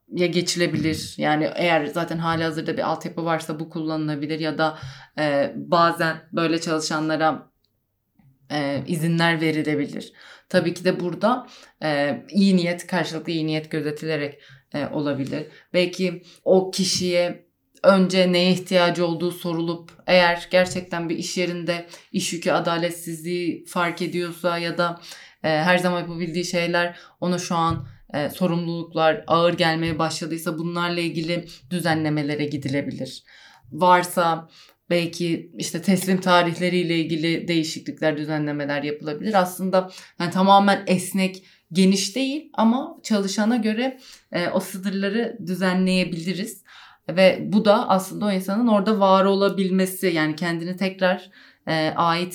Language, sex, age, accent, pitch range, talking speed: Turkish, female, 30-49, native, 160-185 Hz, 120 wpm